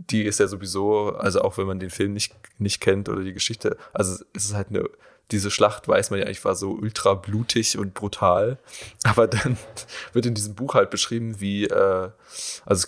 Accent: German